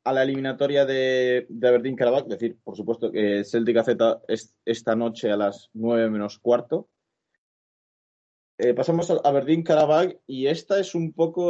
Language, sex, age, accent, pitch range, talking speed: Spanish, male, 20-39, Spanish, 120-145 Hz, 155 wpm